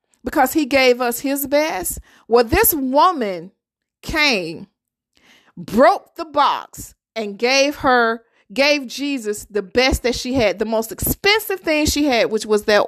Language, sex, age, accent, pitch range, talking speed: English, female, 40-59, American, 250-355 Hz, 150 wpm